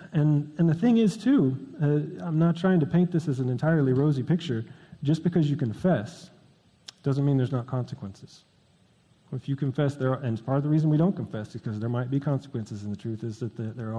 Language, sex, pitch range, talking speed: English, male, 120-155 Hz, 225 wpm